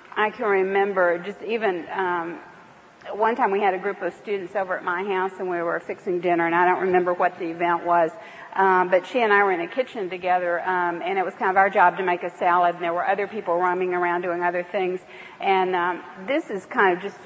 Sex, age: female, 50-69